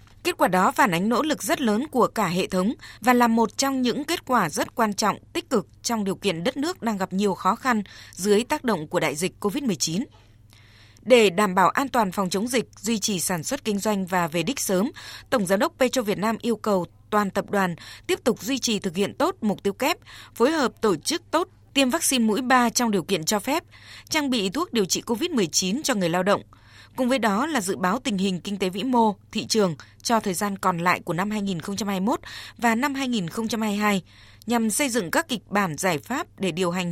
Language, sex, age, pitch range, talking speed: Vietnamese, female, 20-39, 185-245 Hz, 230 wpm